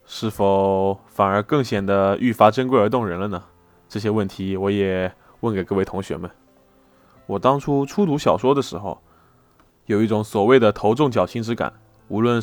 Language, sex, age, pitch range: Chinese, male, 20-39, 95-120 Hz